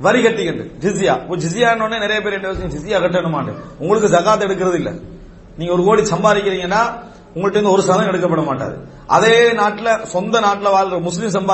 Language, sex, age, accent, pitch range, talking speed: English, male, 40-59, Indian, 180-235 Hz, 150 wpm